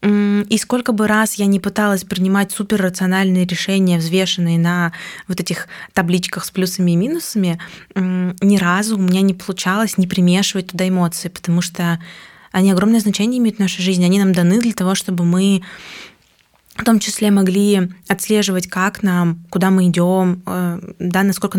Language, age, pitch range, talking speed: Russian, 20-39, 180-200 Hz, 160 wpm